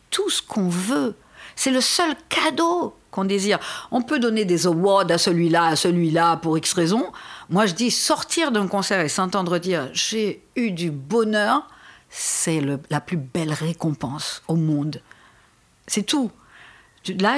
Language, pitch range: French, 165-250 Hz